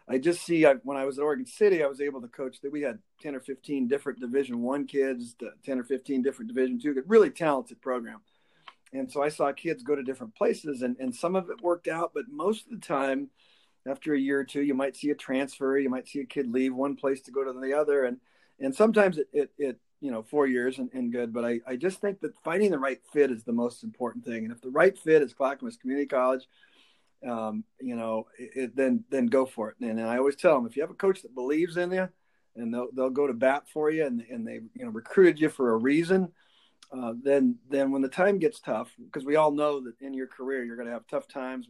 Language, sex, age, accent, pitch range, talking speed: English, male, 40-59, American, 125-170 Hz, 260 wpm